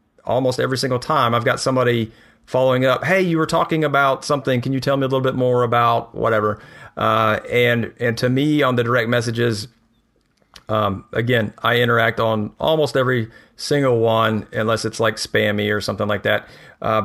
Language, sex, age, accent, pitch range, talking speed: English, male, 40-59, American, 115-145 Hz, 185 wpm